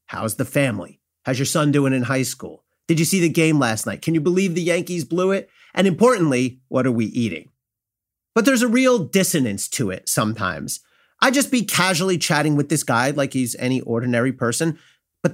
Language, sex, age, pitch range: English, male, 30-49, 120-175 Hz